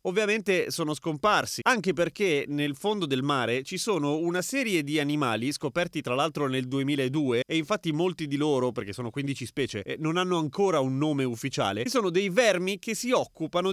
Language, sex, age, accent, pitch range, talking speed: Italian, male, 30-49, native, 140-200 Hz, 190 wpm